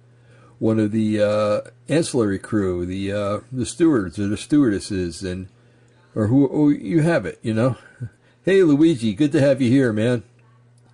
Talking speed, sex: 165 wpm, male